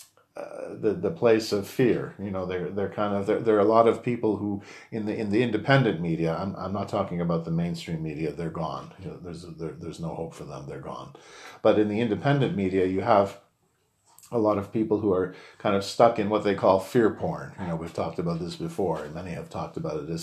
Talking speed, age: 245 wpm, 50-69